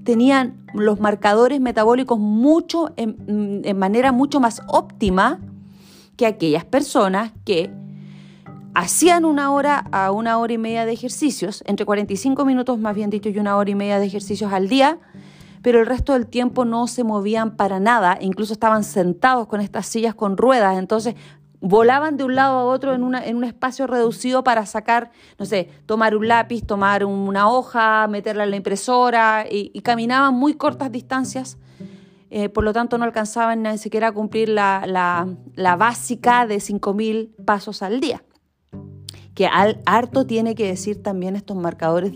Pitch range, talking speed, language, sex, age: 190-235 Hz, 170 wpm, Spanish, female, 30-49